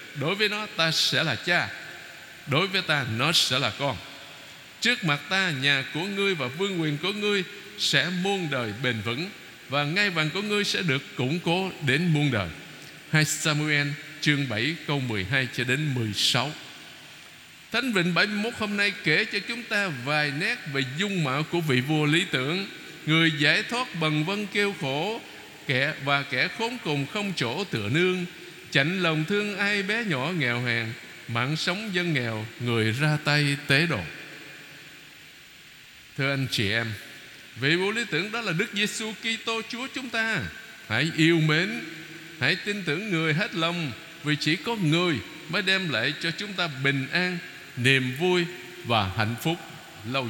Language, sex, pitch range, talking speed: Vietnamese, male, 140-185 Hz, 175 wpm